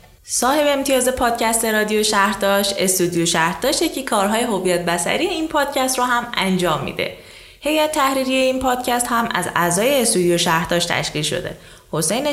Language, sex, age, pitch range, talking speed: Persian, female, 20-39, 185-260 Hz, 140 wpm